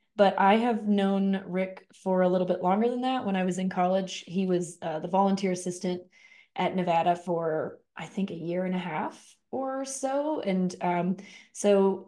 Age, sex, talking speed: 20-39, female, 190 wpm